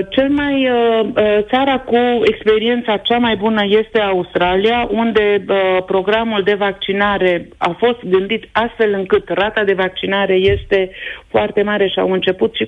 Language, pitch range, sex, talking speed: Romanian, 175-210 Hz, female, 135 wpm